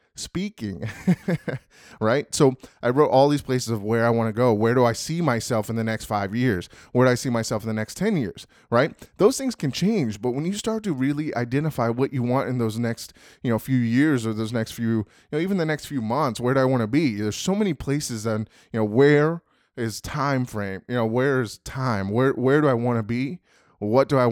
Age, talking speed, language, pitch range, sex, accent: 20-39, 245 wpm, English, 110-135 Hz, male, American